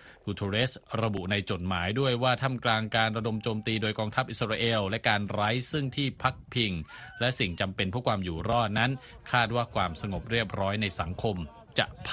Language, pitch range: Thai, 100-125 Hz